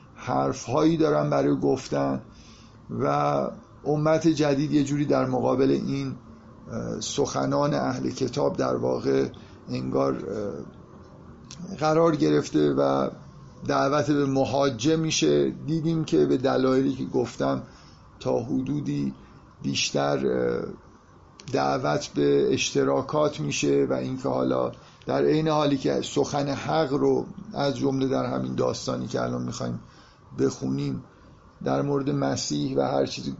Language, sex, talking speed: Persian, male, 115 wpm